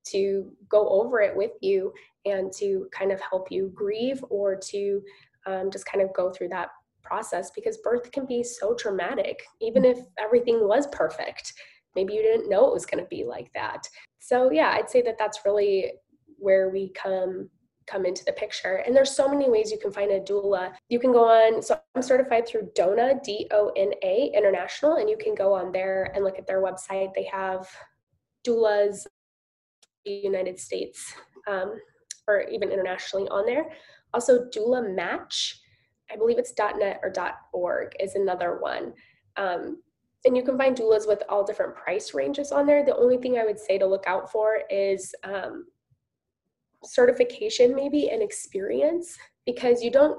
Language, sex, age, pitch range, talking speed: English, female, 10-29, 195-290 Hz, 175 wpm